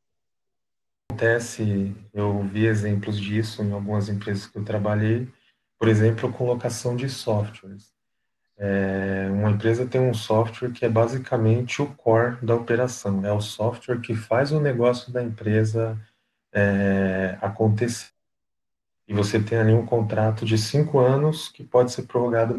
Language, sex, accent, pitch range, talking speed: Portuguese, male, Brazilian, 105-125 Hz, 145 wpm